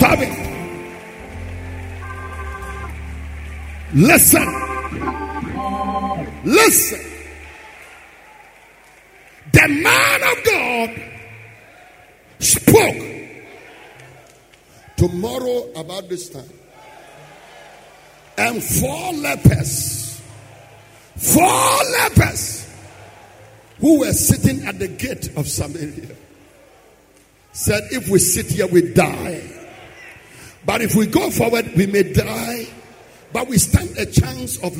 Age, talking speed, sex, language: 50-69, 80 wpm, male, English